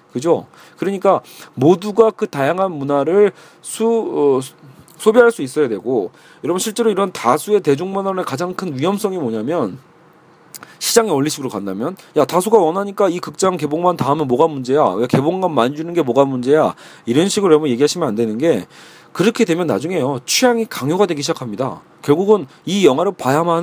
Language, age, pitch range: Korean, 40-59, 145-205 Hz